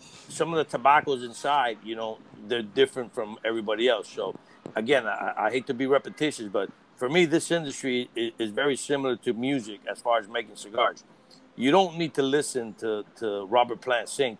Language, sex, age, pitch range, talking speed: English, male, 50-69, 115-145 Hz, 190 wpm